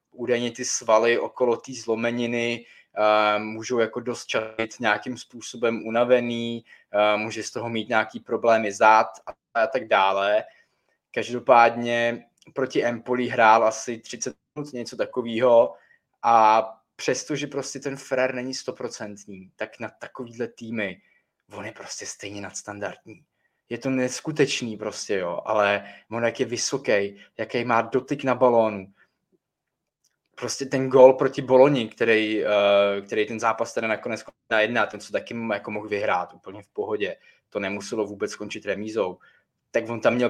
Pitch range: 110-125 Hz